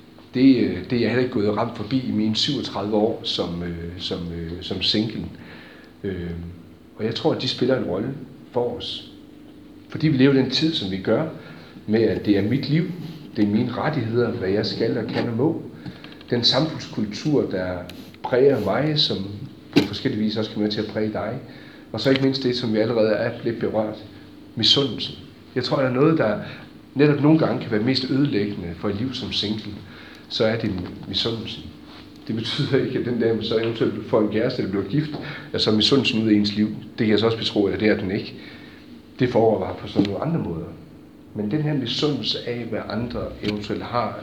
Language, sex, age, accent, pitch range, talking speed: Danish, male, 40-59, native, 100-130 Hz, 210 wpm